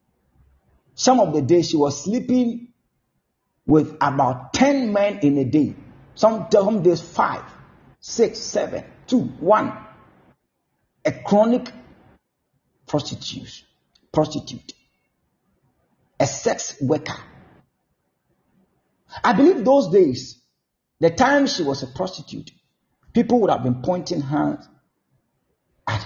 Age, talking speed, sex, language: 50-69, 110 wpm, male, English